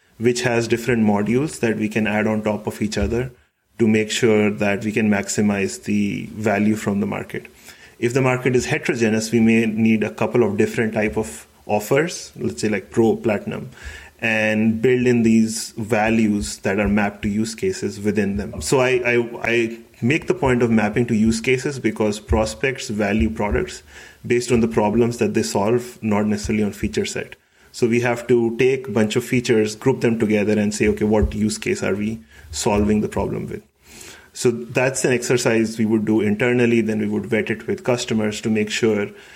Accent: Indian